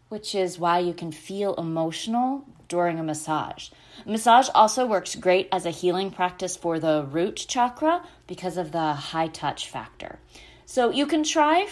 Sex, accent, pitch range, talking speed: female, American, 165-215 Hz, 165 wpm